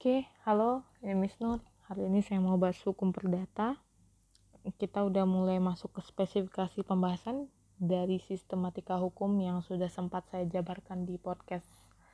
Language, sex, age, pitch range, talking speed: Indonesian, female, 20-39, 180-205 Hz, 145 wpm